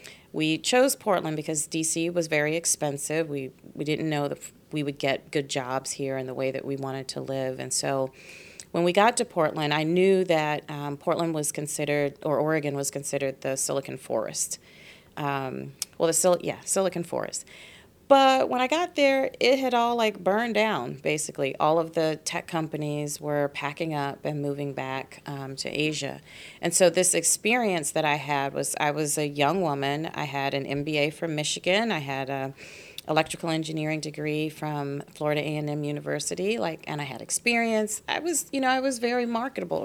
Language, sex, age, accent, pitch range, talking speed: English, female, 30-49, American, 140-180 Hz, 185 wpm